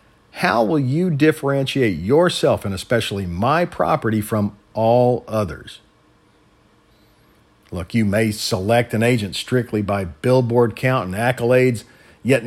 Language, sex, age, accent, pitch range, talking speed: English, male, 50-69, American, 105-135 Hz, 120 wpm